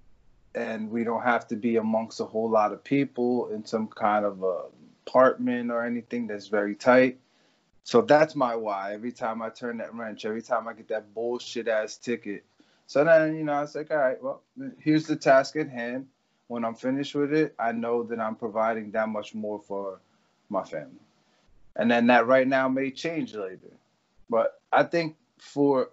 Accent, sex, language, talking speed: American, male, English, 190 wpm